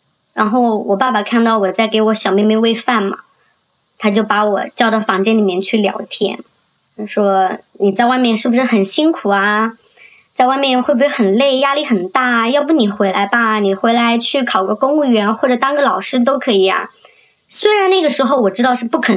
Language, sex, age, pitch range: Chinese, male, 20-39, 215-270 Hz